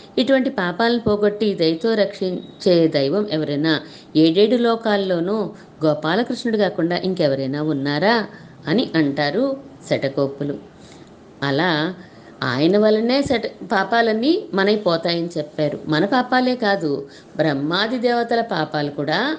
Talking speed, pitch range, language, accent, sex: 95 wpm, 150-215 Hz, Telugu, native, female